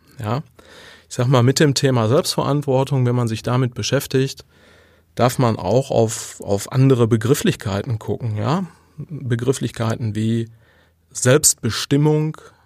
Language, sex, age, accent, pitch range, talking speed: German, male, 30-49, German, 115-140 Hz, 120 wpm